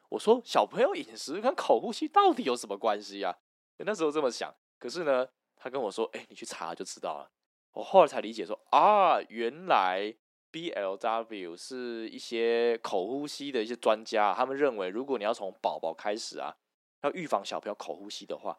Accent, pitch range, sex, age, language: native, 110-170 Hz, male, 20-39, Chinese